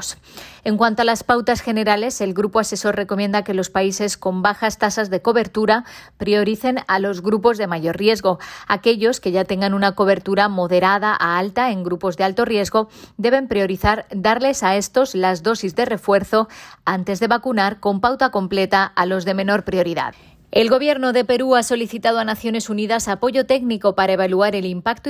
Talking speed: 175 wpm